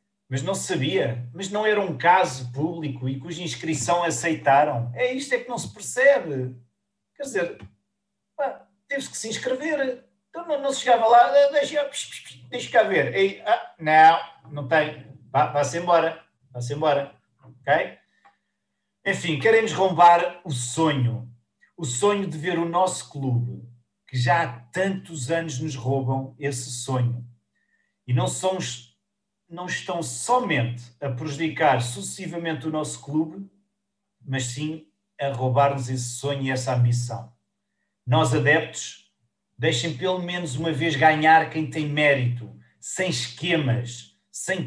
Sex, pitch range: male, 130-180 Hz